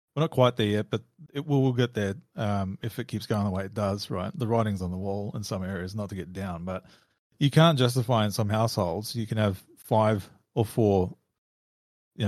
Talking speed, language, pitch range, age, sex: 230 wpm, English, 100-120 Hz, 30-49, male